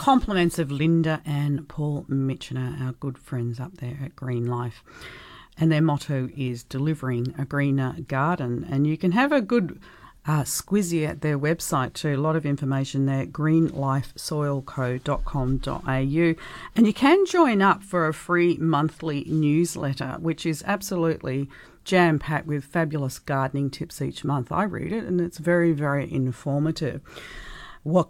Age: 40-59